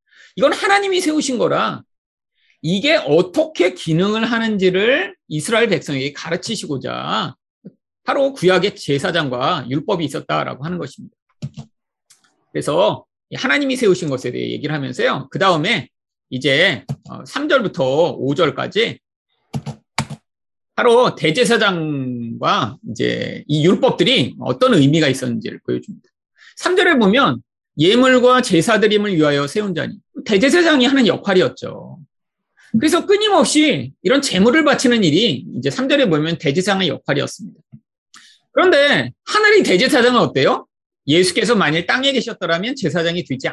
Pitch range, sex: 160-265 Hz, male